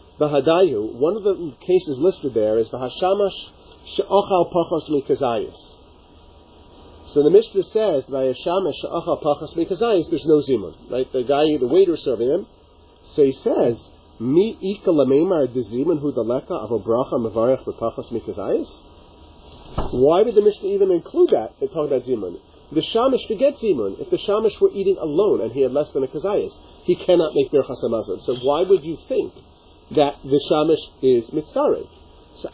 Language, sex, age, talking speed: English, male, 40-59, 165 wpm